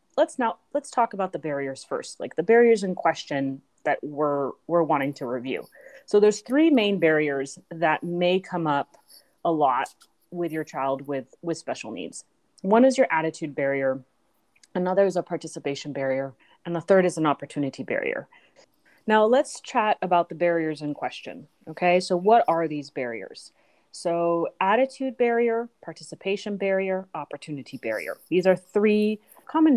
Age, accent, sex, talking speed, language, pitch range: 30-49, American, female, 160 wpm, English, 150-190 Hz